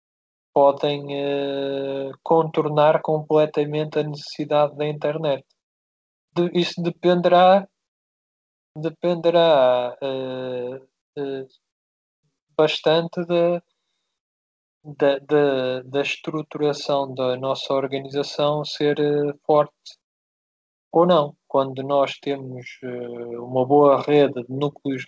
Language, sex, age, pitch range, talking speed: Portuguese, male, 20-39, 130-150 Hz, 90 wpm